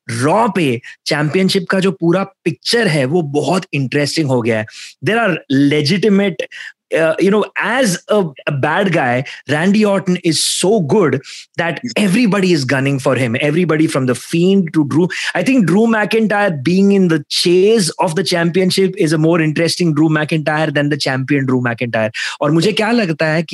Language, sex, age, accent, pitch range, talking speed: English, male, 30-49, Indian, 145-185 Hz, 160 wpm